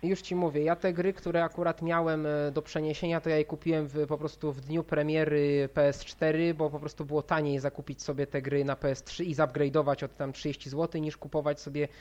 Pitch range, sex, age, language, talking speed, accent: 145-170 Hz, male, 20-39, Polish, 210 wpm, native